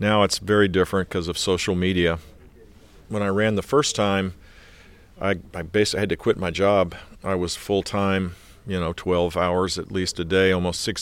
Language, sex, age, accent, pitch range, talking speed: English, male, 50-69, American, 90-100 Hz, 190 wpm